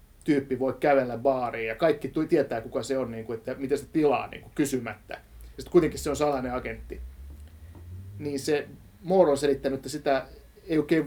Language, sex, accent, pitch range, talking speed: Finnish, male, native, 115-145 Hz, 165 wpm